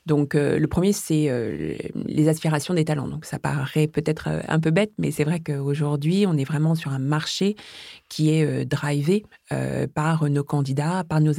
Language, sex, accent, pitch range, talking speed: French, female, French, 145-165 Hz, 195 wpm